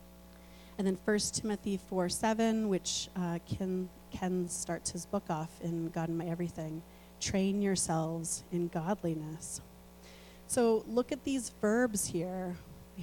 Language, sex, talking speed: English, female, 135 wpm